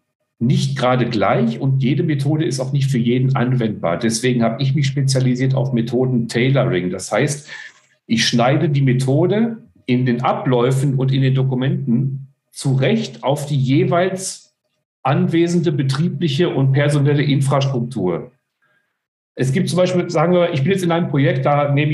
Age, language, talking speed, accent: 50-69, German, 150 wpm, German